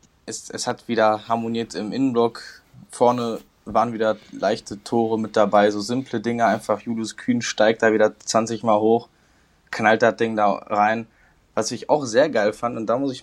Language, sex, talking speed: German, male, 185 wpm